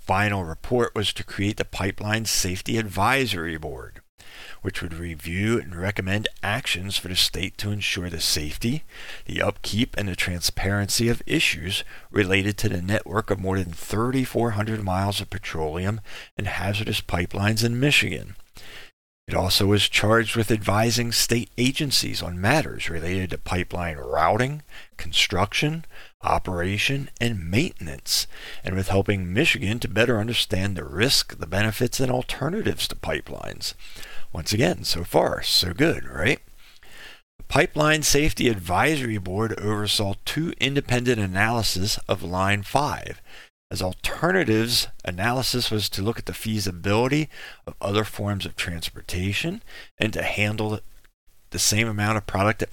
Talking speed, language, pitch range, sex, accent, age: 135 wpm, English, 95-115 Hz, male, American, 40-59